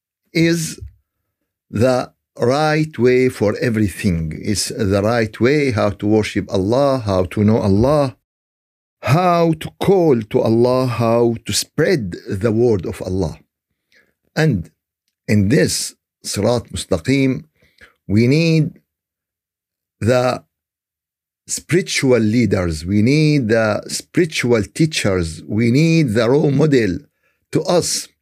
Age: 50-69